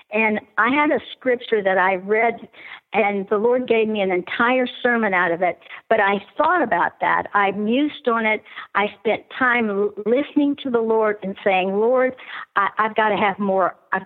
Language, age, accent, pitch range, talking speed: English, 60-79, American, 190-230 Hz, 190 wpm